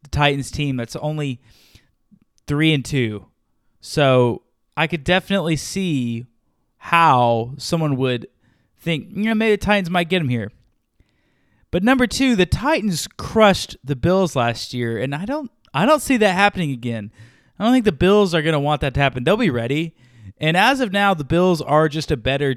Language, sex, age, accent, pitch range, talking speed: English, male, 20-39, American, 125-170 Hz, 180 wpm